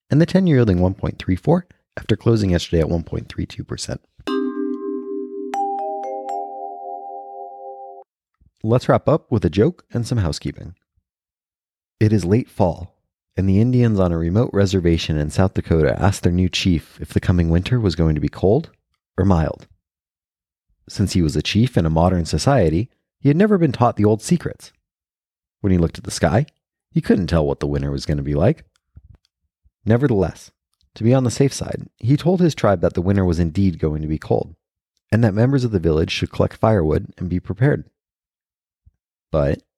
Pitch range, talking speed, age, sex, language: 80-115 Hz, 175 wpm, 30-49, male, English